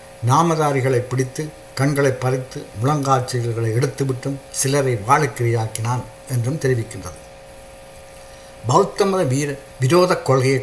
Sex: male